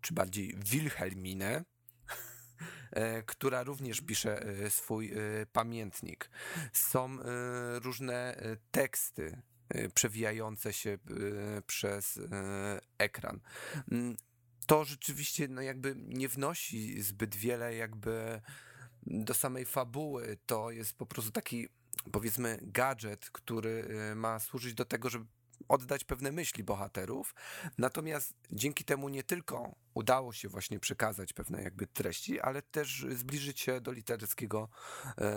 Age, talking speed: 30-49, 105 wpm